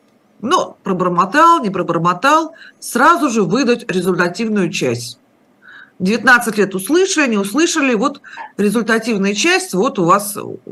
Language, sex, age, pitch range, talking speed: Russian, female, 50-69, 175-245 Hz, 110 wpm